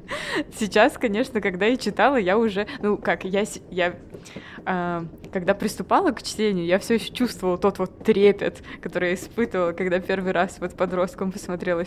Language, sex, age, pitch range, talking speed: Russian, female, 20-39, 190-235 Hz, 160 wpm